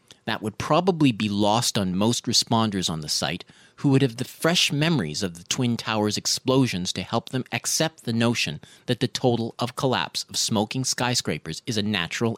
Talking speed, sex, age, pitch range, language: 190 wpm, male, 40-59, 100-140 Hz, English